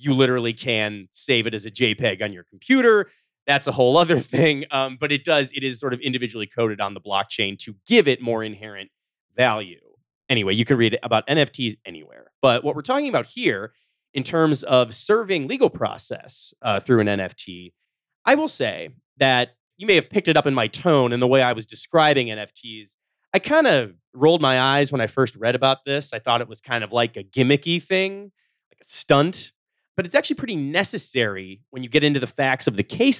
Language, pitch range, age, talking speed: English, 115-155 Hz, 30-49, 210 wpm